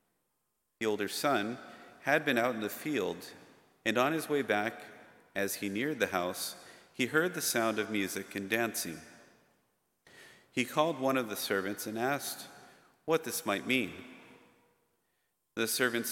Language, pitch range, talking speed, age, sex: English, 100-135 Hz, 155 wpm, 40-59, male